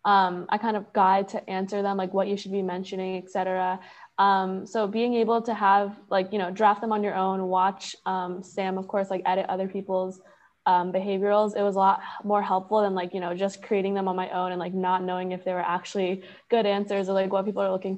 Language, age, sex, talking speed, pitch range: English, 20-39, female, 245 wpm, 190-210 Hz